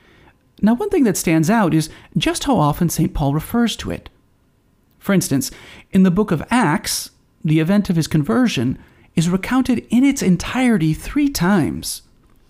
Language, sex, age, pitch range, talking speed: English, male, 30-49, 150-220 Hz, 165 wpm